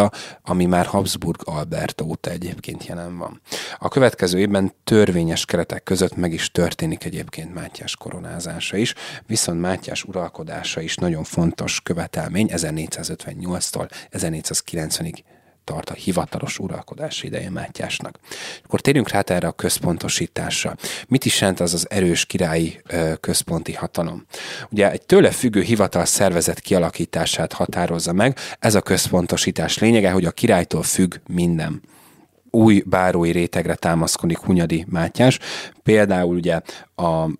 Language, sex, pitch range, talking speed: Hungarian, male, 85-100 Hz, 125 wpm